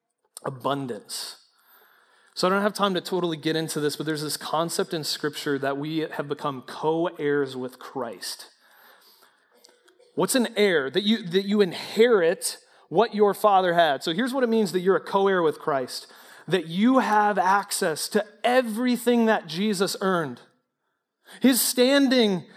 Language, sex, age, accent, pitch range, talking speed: English, male, 30-49, American, 160-225 Hz, 155 wpm